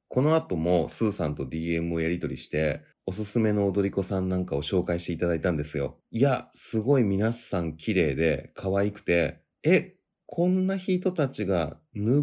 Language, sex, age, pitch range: Japanese, male, 30-49, 85-130 Hz